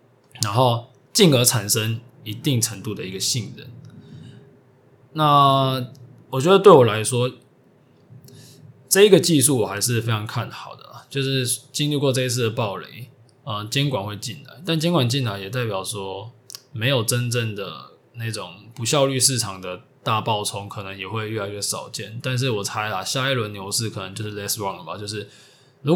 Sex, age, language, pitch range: male, 20-39, Chinese, 110-135 Hz